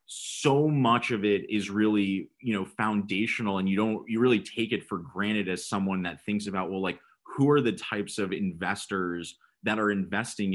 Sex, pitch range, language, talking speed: male, 95-115 Hz, English, 195 wpm